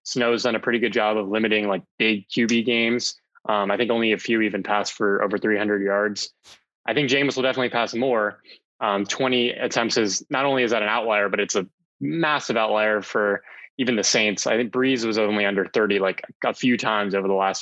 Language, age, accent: English, 20-39, American